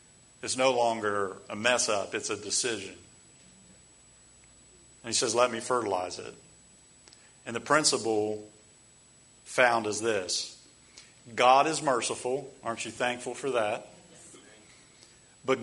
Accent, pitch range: American, 115-150 Hz